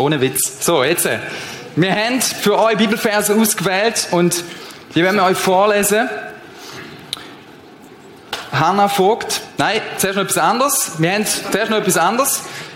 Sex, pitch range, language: male, 145-205 Hz, German